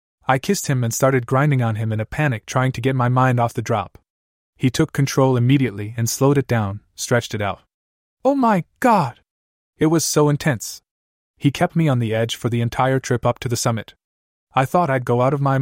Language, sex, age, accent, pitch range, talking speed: English, male, 20-39, American, 110-145 Hz, 225 wpm